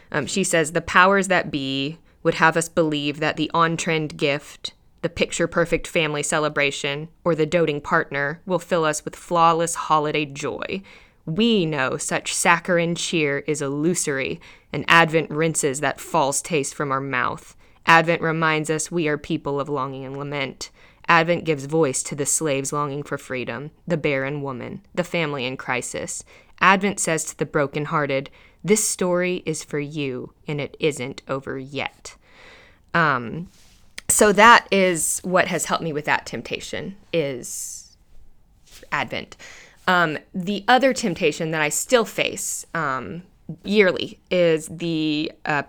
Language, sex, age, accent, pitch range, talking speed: English, female, 20-39, American, 145-185 Hz, 150 wpm